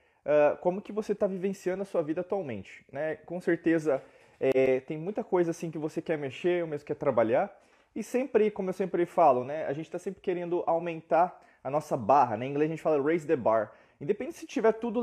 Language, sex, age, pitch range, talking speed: Portuguese, male, 20-39, 150-190 Hz, 210 wpm